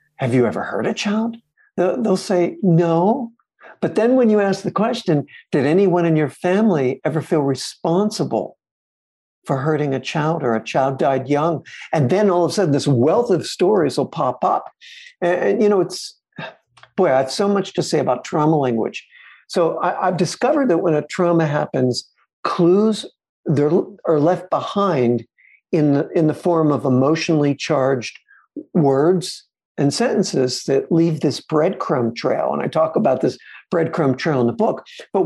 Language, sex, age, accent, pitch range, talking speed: English, male, 60-79, American, 145-185 Hz, 170 wpm